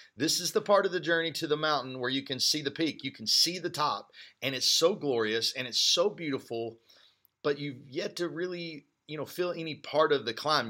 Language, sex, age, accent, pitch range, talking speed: English, male, 40-59, American, 105-150 Hz, 235 wpm